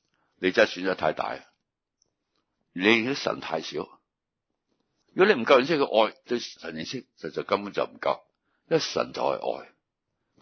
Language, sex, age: Chinese, male, 60-79